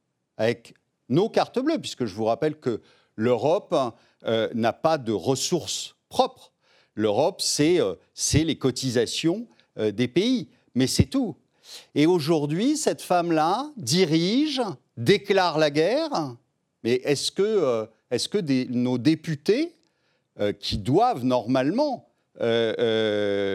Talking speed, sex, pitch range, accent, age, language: 130 wpm, male, 120-175 Hz, French, 50-69, French